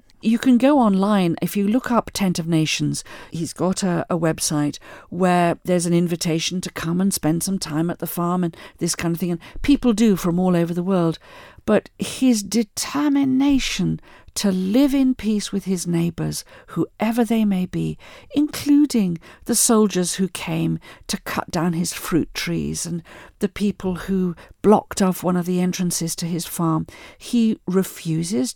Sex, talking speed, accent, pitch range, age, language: female, 170 wpm, British, 170-215 Hz, 50-69, English